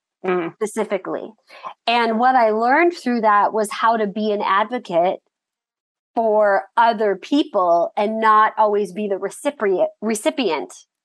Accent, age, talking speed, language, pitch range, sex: American, 30-49, 125 wpm, English, 200-250 Hz, female